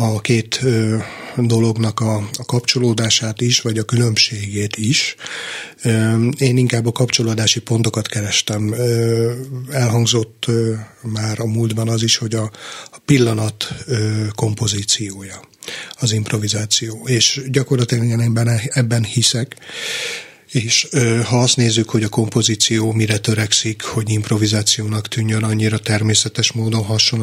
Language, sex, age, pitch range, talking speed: Hungarian, male, 30-49, 110-120 Hz, 105 wpm